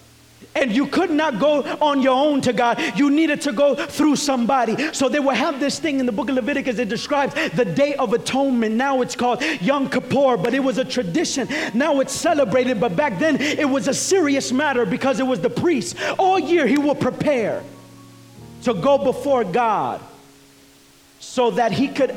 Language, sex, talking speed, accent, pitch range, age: English, male, 195 wpm, American, 230-275 Hz, 40-59